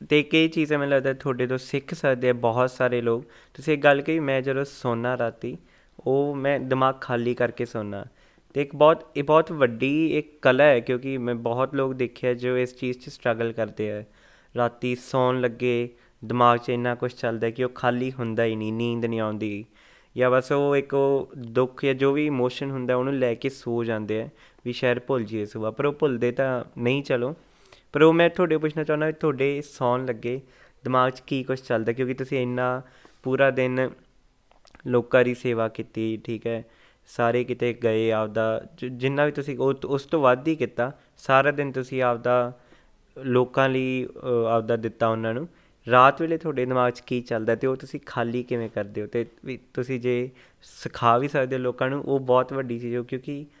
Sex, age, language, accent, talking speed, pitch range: male, 20-39, English, Indian, 130 wpm, 120-135 Hz